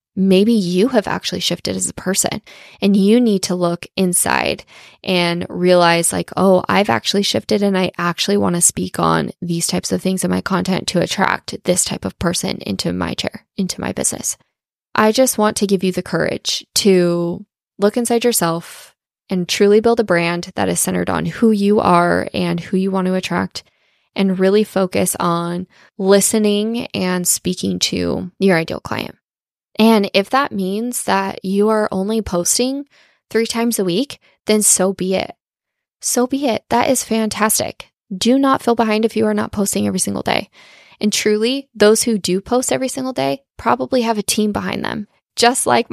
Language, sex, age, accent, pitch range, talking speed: English, female, 20-39, American, 185-225 Hz, 185 wpm